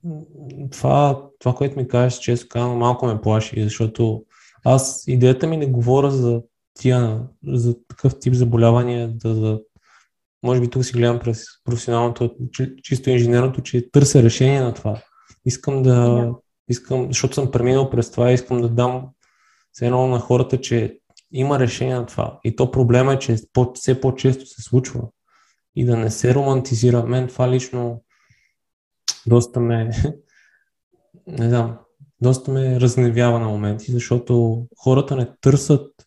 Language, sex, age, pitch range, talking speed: Bulgarian, male, 20-39, 120-140 Hz, 145 wpm